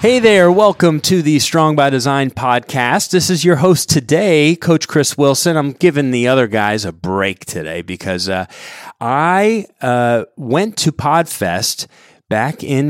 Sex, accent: male, American